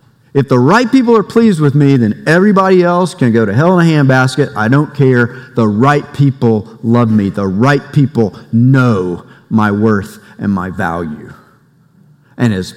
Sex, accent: male, American